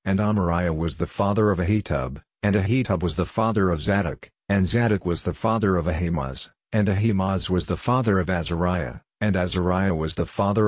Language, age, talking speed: English, 50-69, 185 wpm